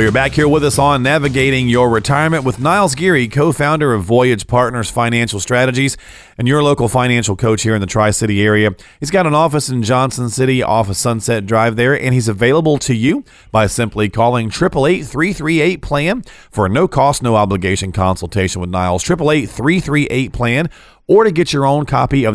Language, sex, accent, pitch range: English, male, American, 105-140 Hz